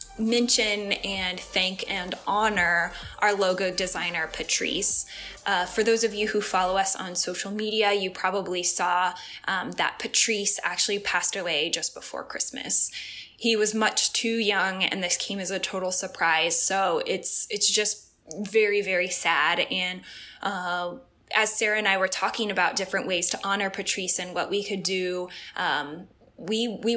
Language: English